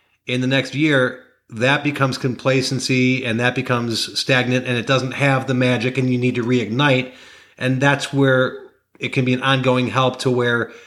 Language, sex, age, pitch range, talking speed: English, male, 40-59, 125-145 Hz, 180 wpm